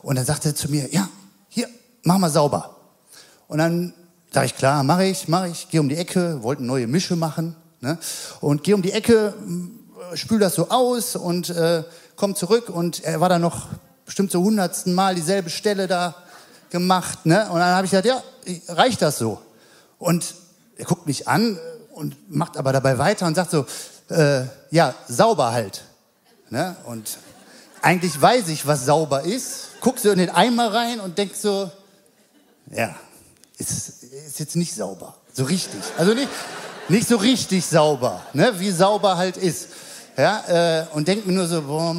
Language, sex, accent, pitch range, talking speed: German, male, German, 150-195 Hz, 180 wpm